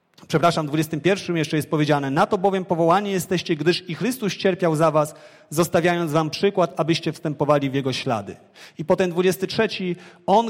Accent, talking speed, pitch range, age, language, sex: native, 165 wpm, 145-180 Hz, 40-59, Polish, male